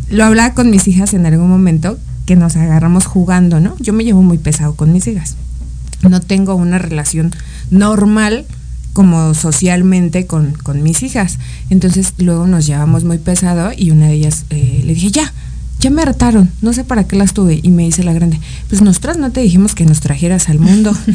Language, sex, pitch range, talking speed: Spanish, female, 160-220 Hz, 200 wpm